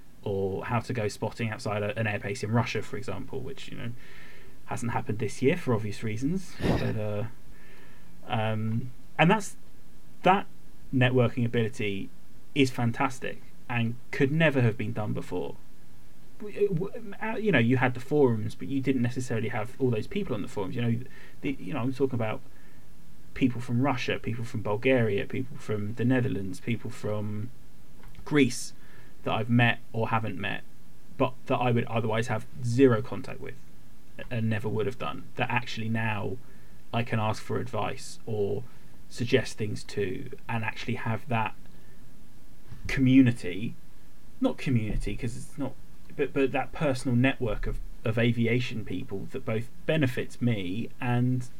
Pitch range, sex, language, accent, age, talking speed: 110-135 Hz, male, English, British, 20-39, 155 wpm